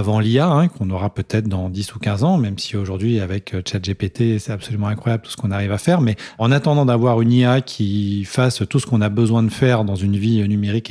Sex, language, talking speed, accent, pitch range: male, French, 240 wpm, French, 100-120 Hz